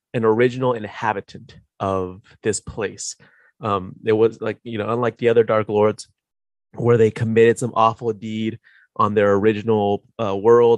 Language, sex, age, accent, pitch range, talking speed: English, male, 30-49, American, 105-125 Hz, 155 wpm